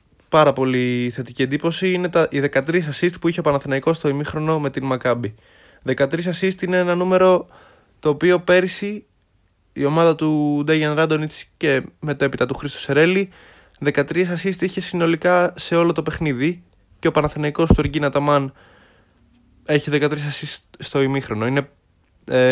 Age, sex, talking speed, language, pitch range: 20-39, male, 150 wpm, Greek, 130-160 Hz